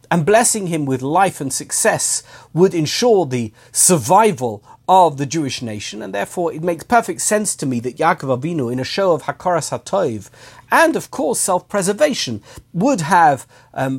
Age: 50-69